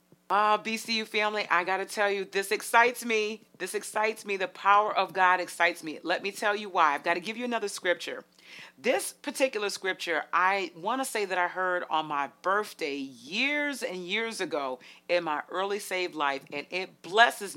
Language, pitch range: English, 155-235 Hz